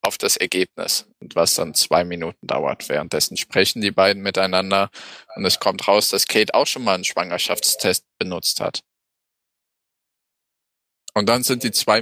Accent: German